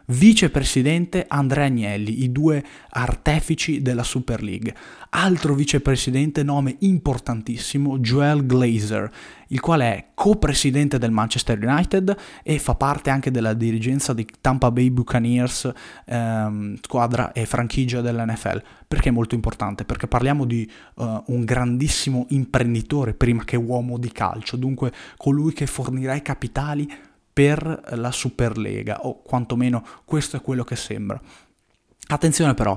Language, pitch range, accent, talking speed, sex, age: Italian, 115-145 Hz, native, 130 wpm, male, 20-39